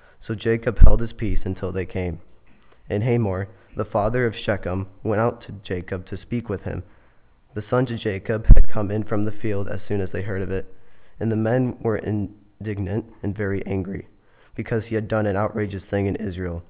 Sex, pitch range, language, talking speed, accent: male, 95-110 Hz, English, 200 wpm, American